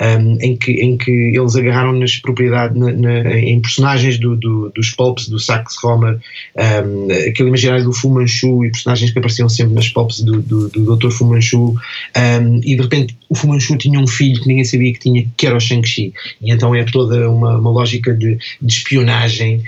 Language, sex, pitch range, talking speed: Portuguese, male, 115-125 Hz, 200 wpm